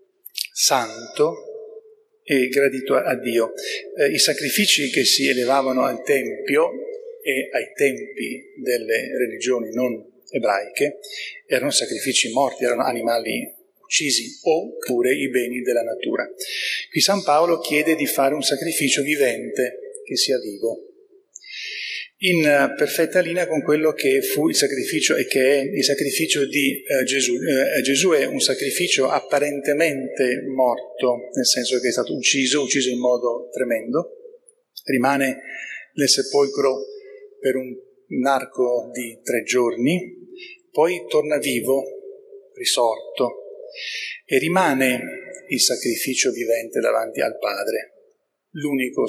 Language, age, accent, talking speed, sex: Italian, 40-59, native, 120 wpm, male